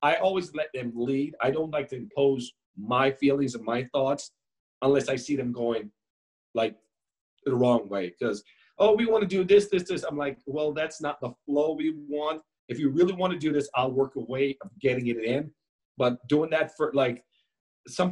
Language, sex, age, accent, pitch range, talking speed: English, male, 40-59, American, 125-160 Hz, 210 wpm